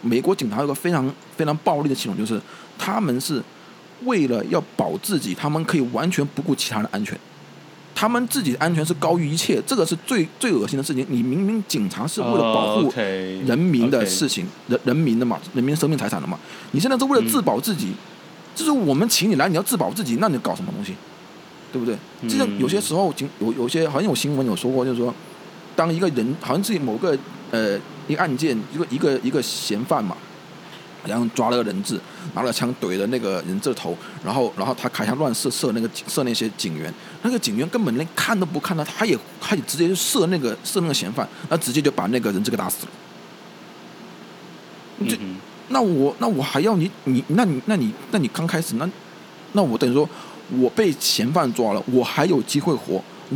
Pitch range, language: 130-200 Hz, Chinese